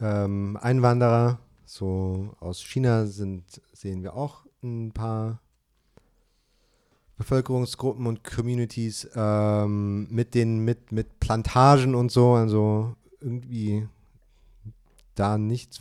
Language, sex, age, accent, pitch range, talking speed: German, male, 40-59, German, 105-130 Hz, 95 wpm